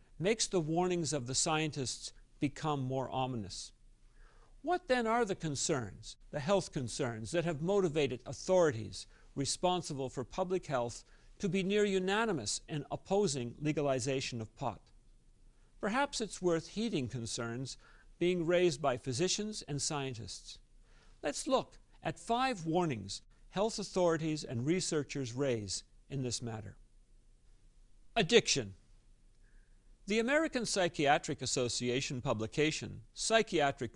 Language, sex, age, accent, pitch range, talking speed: English, male, 50-69, American, 120-180 Hz, 115 wpm